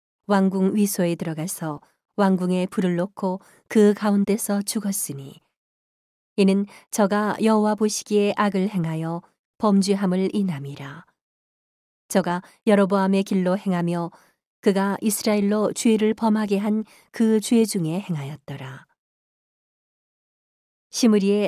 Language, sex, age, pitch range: Korean, female, 40-59, 180-210 Hz